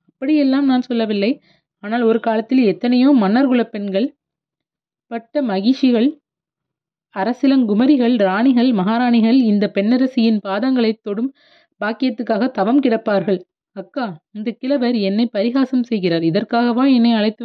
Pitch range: 195-245 Hz